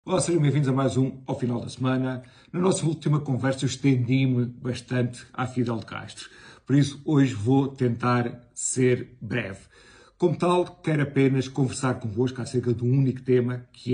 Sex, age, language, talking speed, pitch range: male, 50-69, Portuguese, 175 wpm, 115-130 Hz